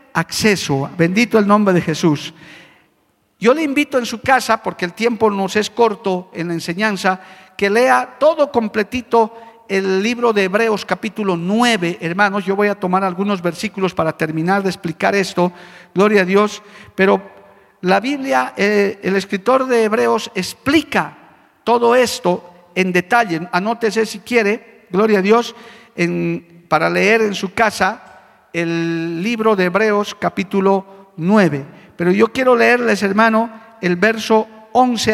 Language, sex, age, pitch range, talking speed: Spanish, male, 50-69, 185-235 Hz, 145 wpm